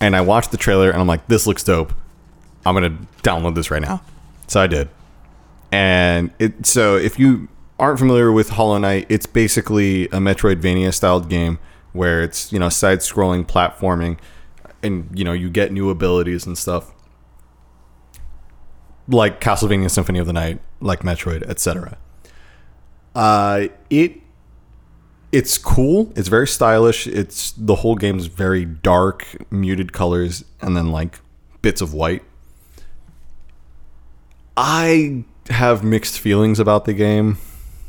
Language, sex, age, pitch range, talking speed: English, male, 30-49, 85-105 Hz, 140 wpm